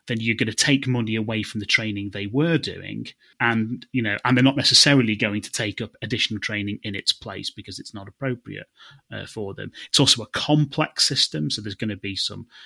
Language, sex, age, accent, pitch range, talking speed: English, male, 30-49, British, 105-125 Hz, 225 wpm